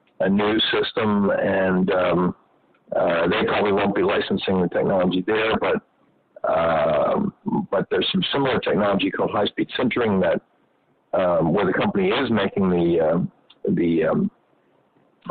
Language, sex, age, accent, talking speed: English, male, 50-69, American, 140 wpm